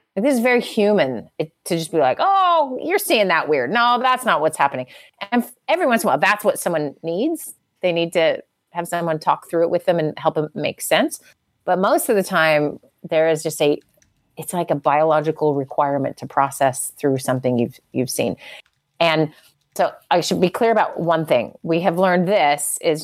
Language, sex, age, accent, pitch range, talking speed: English, female, 30-49, American, 150-185 Hz, 205 wpm